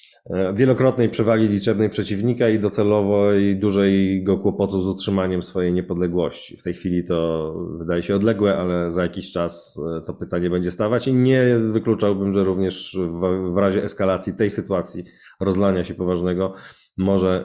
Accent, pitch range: native, 95-115 Hz